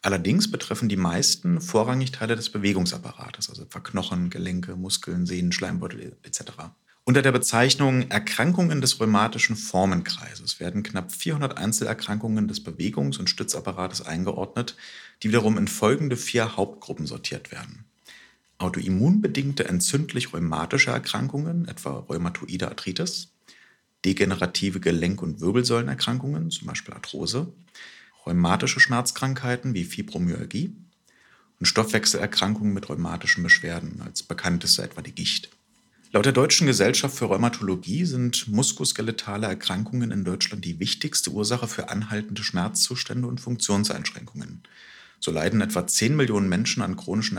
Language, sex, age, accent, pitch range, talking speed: German, male, 40-59, German, 95-135 Hz, 120 wpm